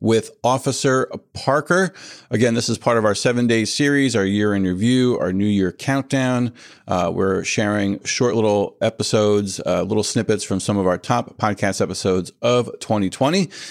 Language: English